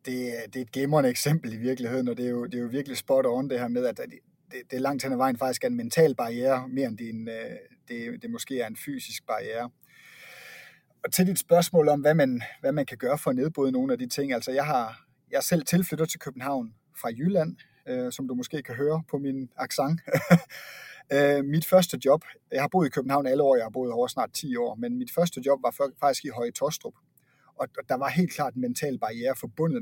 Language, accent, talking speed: Danish, native, 235 wpm